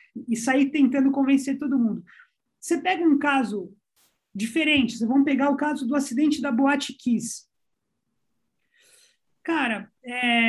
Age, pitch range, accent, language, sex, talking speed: 20-39, 225-280 Hz, Brazilian, Portuguese, male, 125 wpm